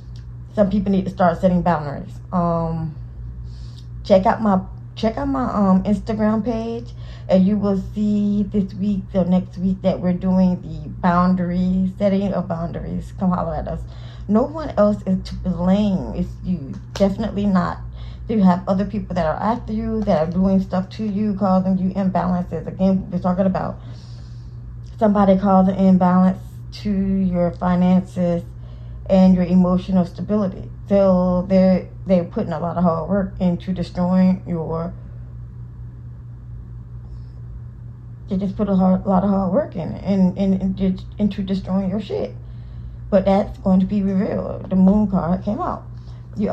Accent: American